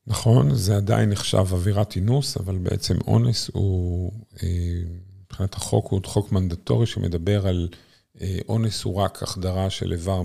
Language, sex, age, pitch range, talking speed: Hebrew, male, 50-69, 90-115 Hz, 135 wpm